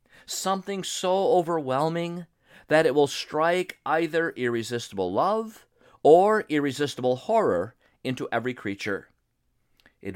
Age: 50-69